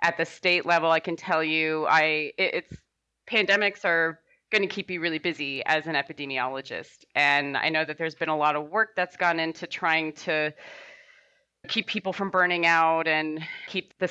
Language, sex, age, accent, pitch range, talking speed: English, female, 30-49, American, 150-180 Hz, 185 wpm